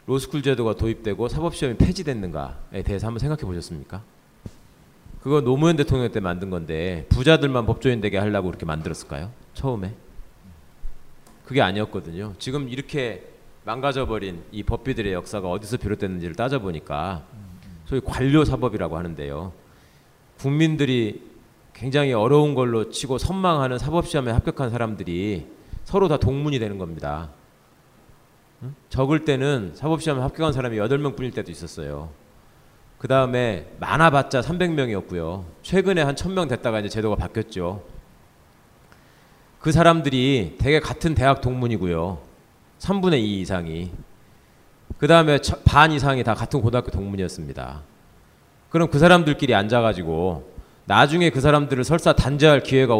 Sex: male